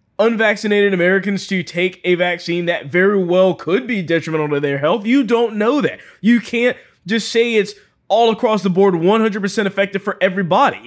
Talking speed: 175 wpm